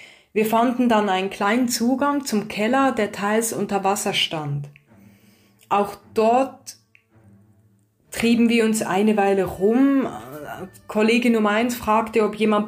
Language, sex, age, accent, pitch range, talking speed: German, female, 20-39, German, 170-230 Hz, 130 wpm